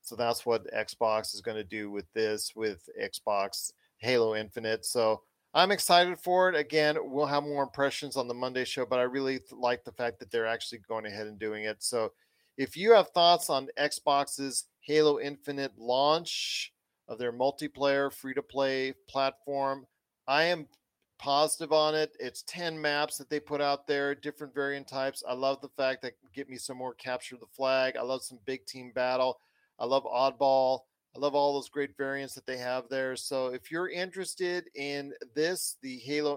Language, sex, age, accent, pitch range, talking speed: English, male, 40-59, American, 125-145 Hz, 190 wpm